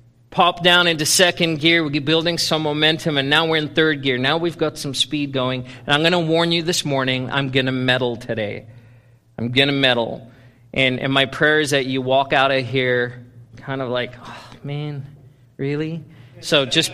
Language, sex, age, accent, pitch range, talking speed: English, male, 40-59, American, 130-175 Hz, 205 wpm